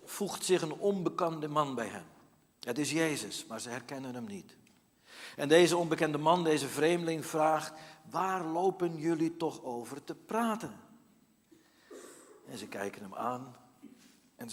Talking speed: 145 wpm